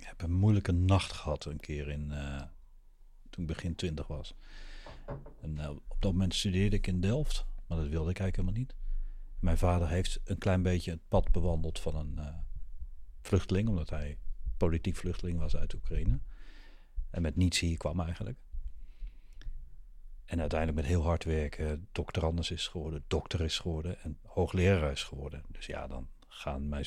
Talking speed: 170 wpm